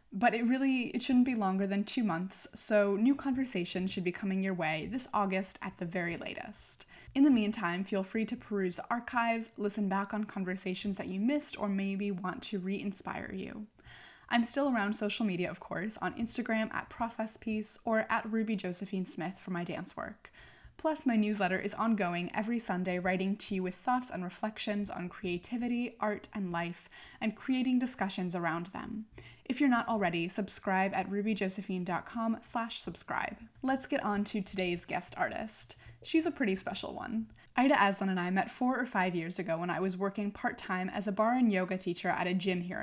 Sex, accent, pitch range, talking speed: female, American, 185-235 Hz, 190 wpm